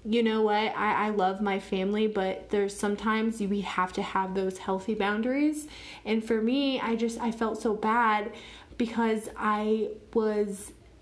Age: 20-39